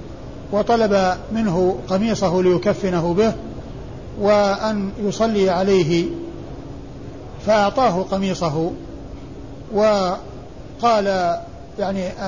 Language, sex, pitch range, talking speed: Arabic, male, 180-205 Hz, 60 wpm